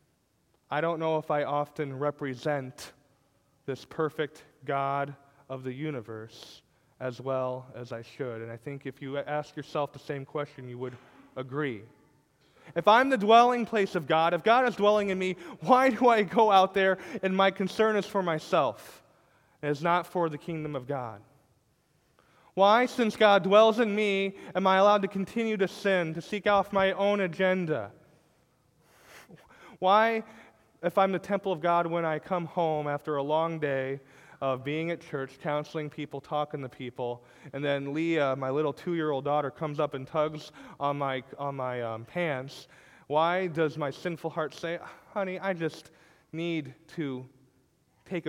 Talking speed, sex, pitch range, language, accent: 170 wpm, male, 135-180 Hz, English, American